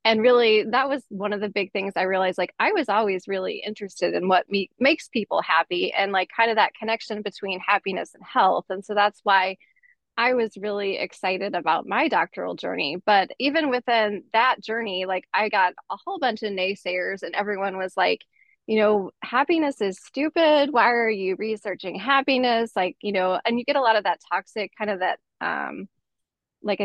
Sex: female